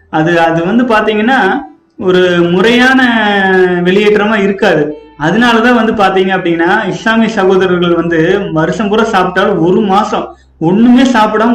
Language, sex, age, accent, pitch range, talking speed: Tamil, male, 30-49, native, 180-225 Hz, 115 wpm